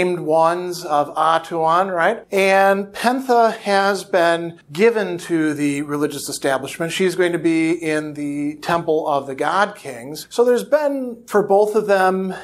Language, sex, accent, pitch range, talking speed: English, male, American, 150-185 Hz, 150 wpm